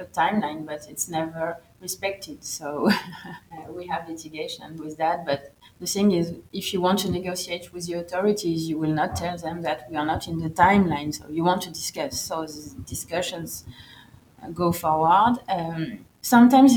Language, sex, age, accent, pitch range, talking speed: English, female, 30-49, French, 160-190 Hz, 175 wpm